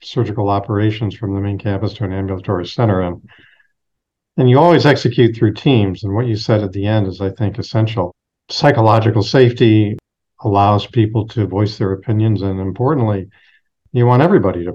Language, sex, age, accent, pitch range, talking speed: English, male, 50-69, American, 100-120 Hz, 170 wpm